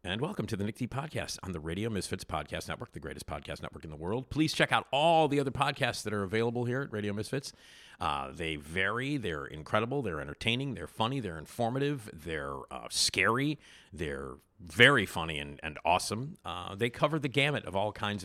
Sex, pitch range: male, 90-130 Hz